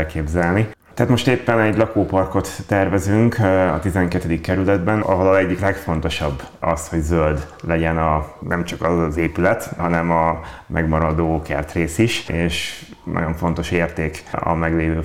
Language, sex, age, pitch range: Hungarian, male, 30-49, 80-95 Hz